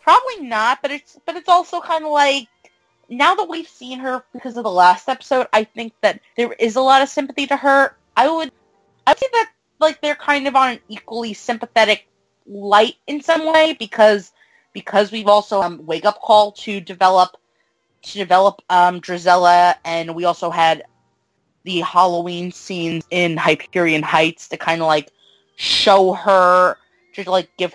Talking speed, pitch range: 175 wpm, 180-265 Hz